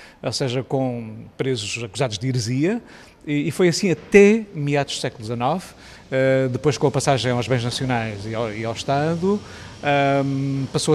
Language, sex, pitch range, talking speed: Portuguese, male, 130-170 Hz, 140 wpm